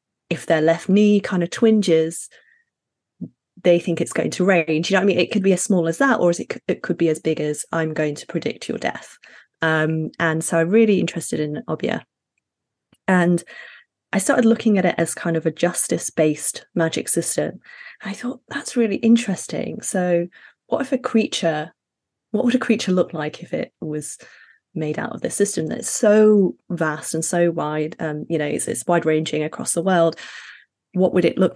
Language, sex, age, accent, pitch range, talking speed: English, female, 20-39, British, 160-210 Hz, 205 wpm